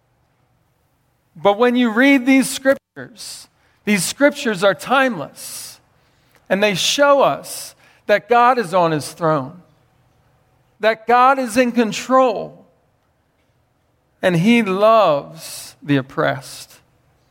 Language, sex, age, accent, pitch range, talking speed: English, male, 40-59, American, 155-235 Hz, 105 wpm